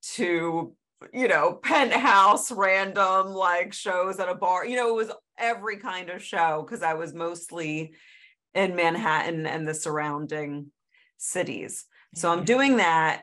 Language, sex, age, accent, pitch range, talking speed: English, female, 30-49, American, 160-200 Hz, 145 wpm